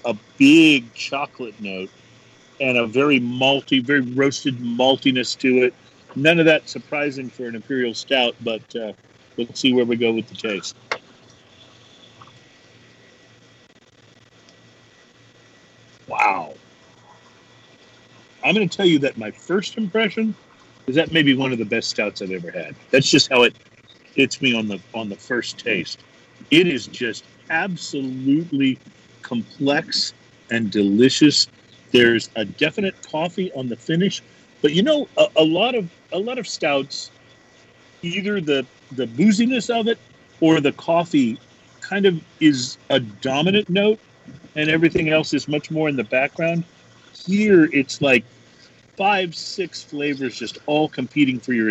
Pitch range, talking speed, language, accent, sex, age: 120-175 Hz, 145 wpm, English, American, male, 50-69